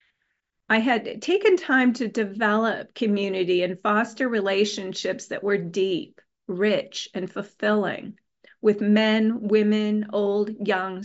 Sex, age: female, 40-59